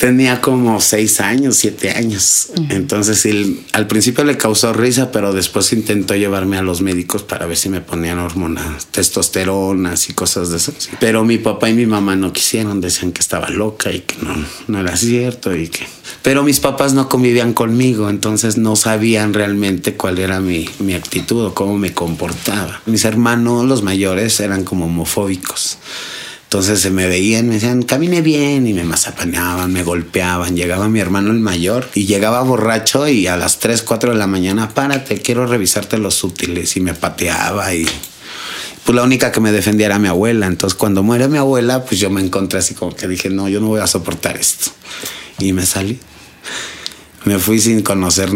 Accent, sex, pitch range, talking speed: Mexican, male, 95-115 Hz, 185 wpm